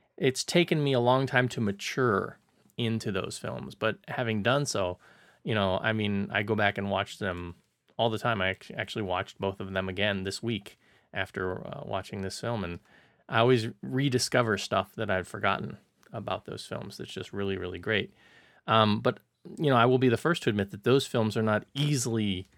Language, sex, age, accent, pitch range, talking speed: English, male, 20-39, American, 100-125 Hz, 200 wpm